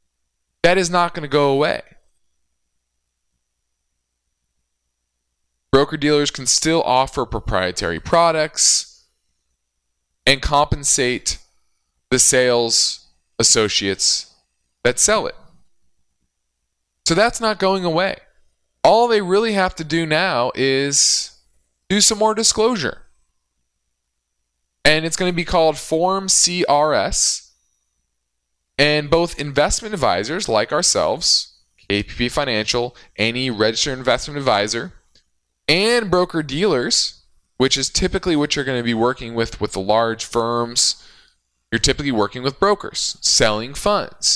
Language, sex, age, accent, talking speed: English, male, 20-39, American, 110 wpm